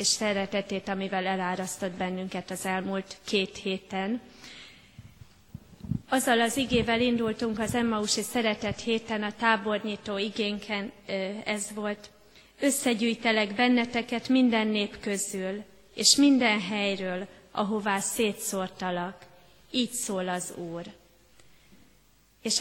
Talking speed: 100 wpm